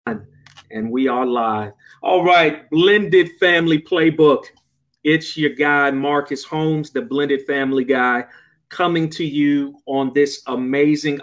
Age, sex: 40-59, male